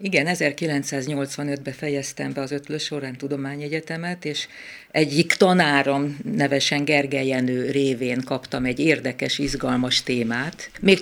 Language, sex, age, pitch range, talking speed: Hungarian, female, 50-69, 135-155 Hz, 110 wpm